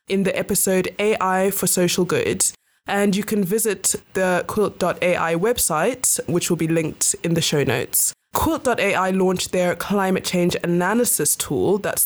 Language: English